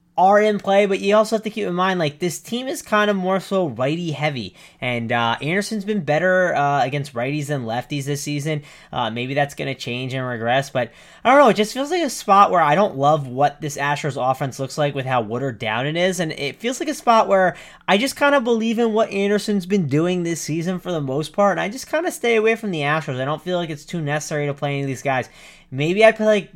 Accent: American